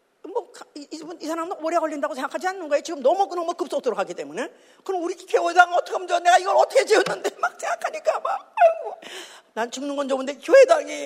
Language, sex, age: Korean, female, 40-59